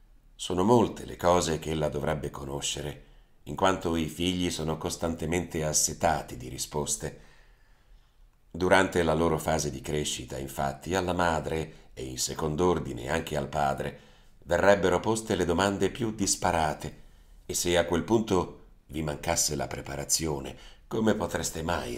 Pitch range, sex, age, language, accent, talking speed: 75-90 Hz, male, 40-59, Italian, native, 140 wpm